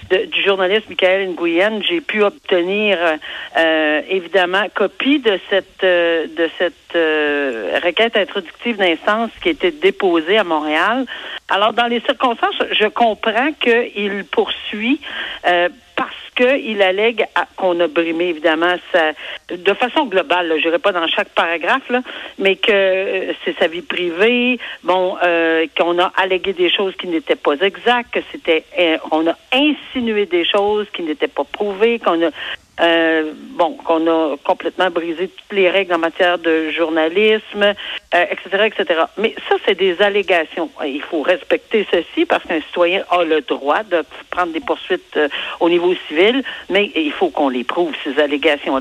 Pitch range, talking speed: 170-220 Hz, 155 wpm